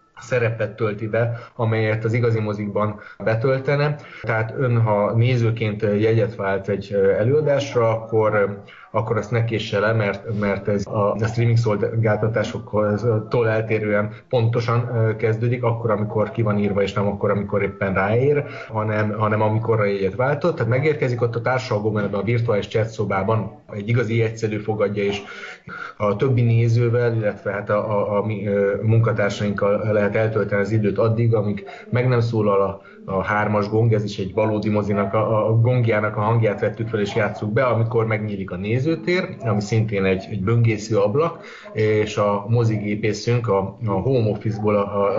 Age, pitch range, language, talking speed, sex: 30-49, 105-115 Hz, Hungarian, 155 wpm, male